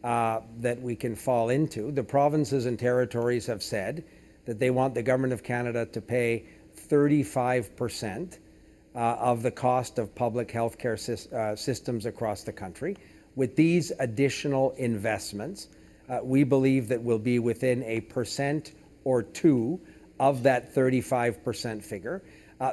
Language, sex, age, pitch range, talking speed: English, male, 50-69, 115-140 Hz, 150 wpm